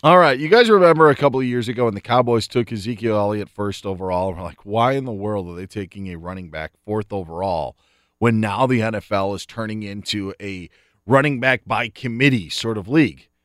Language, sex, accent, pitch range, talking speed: English, male, American, 105-150 Hz, 210 wpm